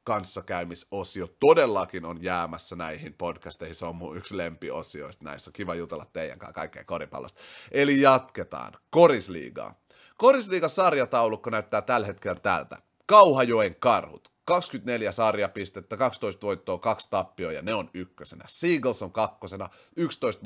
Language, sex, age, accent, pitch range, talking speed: Finnish, male, 30-49, native, 90-125 Hz, 120 wpm